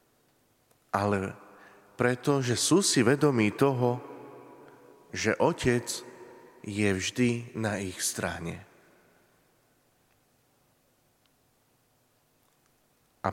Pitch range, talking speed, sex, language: 110-135 Hz, 65 wpm, male, Slovak